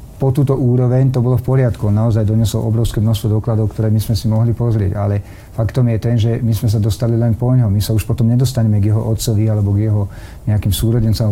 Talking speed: 230 wpm